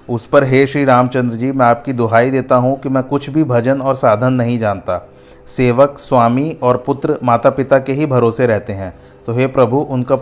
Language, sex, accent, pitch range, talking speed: Hindi, male, native, 120-135 Hz, 205 wpm